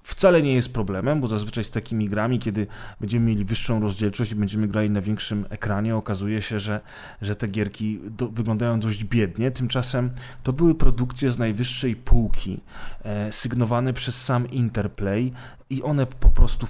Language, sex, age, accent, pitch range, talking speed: Polish, male, 30-49, native, 105-130 Hz, 160 wpm